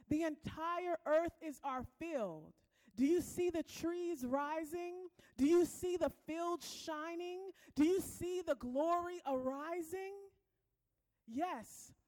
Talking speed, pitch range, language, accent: 125 wpm, 280-345 Hz, English, American